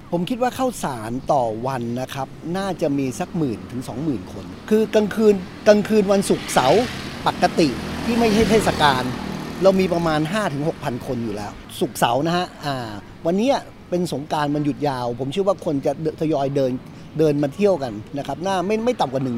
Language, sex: Thai, male